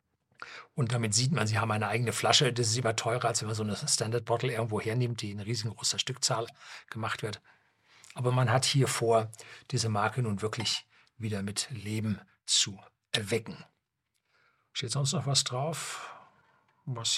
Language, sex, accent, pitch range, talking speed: German, male, German, 110-130 Hz, 165 wpm